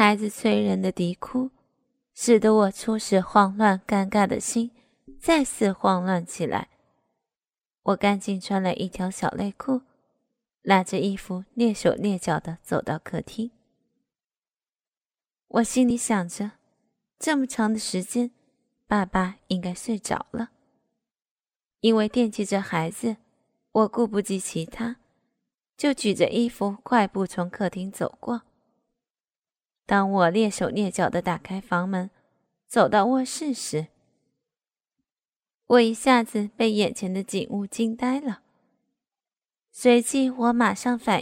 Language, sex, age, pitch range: Chinese, female, 20-39, 195-240 Hz